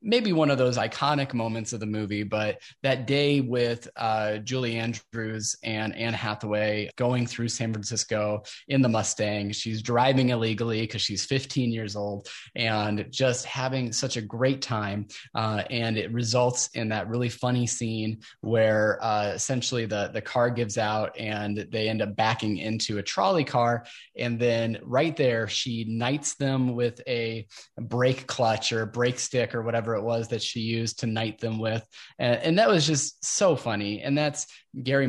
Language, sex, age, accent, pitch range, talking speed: English, male, 20-39, American, 110-125 Hz, 175 wpm